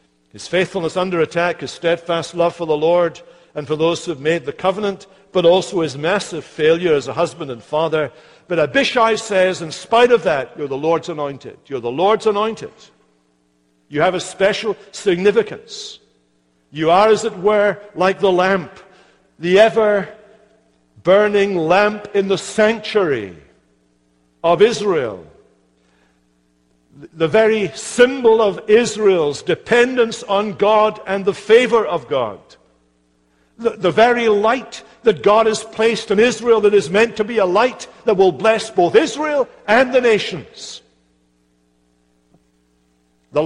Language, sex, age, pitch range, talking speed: English, male, 60-79, 155-215 Hz, 140 wpm